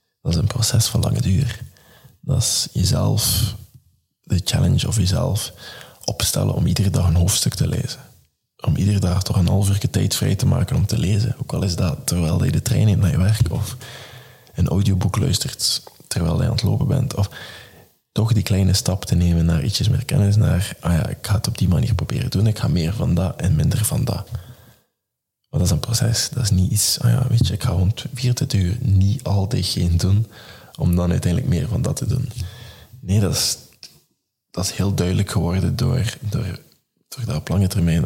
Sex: male